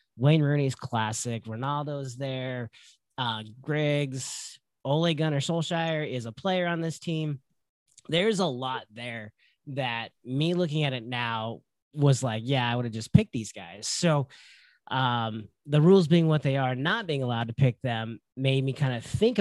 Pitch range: 120-150 Hz